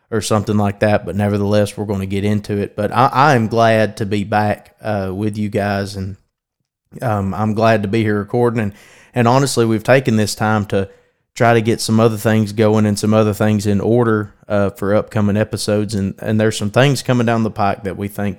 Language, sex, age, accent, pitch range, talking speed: English, male, 20-39, American, 100-115 Hz, 225 wpm